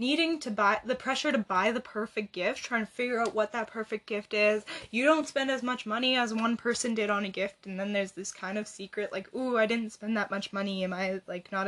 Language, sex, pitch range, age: English, female, 210-260 Hz, 10-29